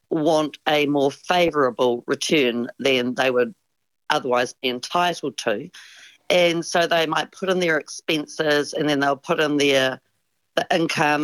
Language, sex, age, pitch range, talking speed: English, female, 50-69, 140-170 Hz, 150 wpm